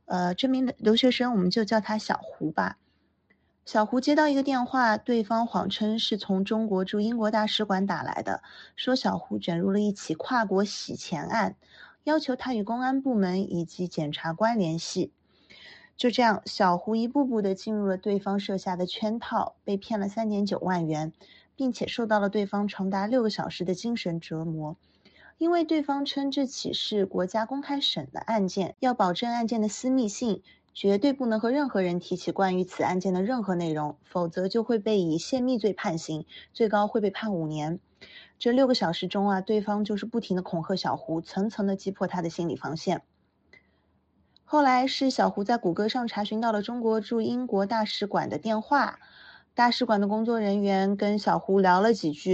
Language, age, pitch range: Chinese, 30-49, 185-235 Hz